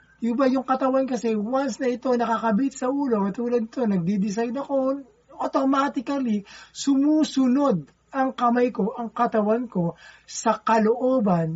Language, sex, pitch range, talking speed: Filipino, male, 180-250 Hz, 125 wpm